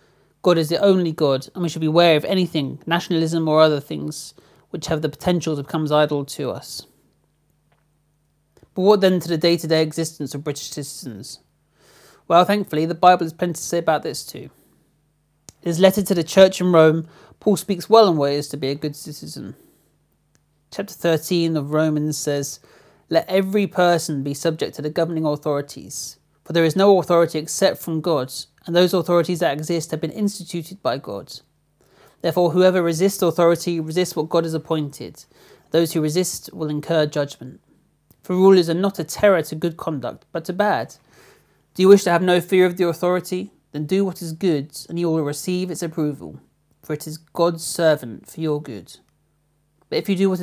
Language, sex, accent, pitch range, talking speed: English, male, British, 150-180 Hz, 185 wpm